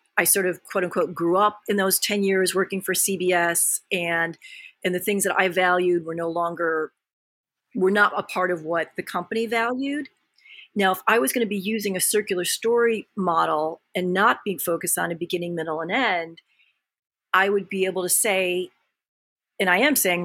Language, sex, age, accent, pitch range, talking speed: English, female, 40-59, American, 180-215 Hz, 195 wpm